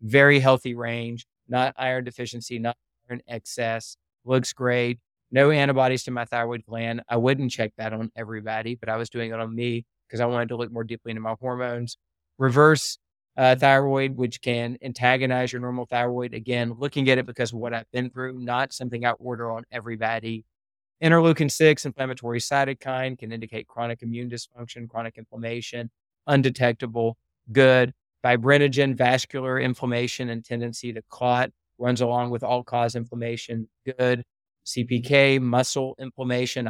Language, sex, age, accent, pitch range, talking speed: English, male, 30-49, American, 115-130 Hz, 155 wpm